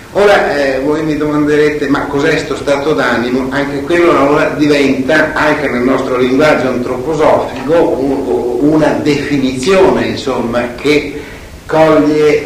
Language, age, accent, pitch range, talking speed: Italian, 60-79, native, 120-155 Hz, 125 wpm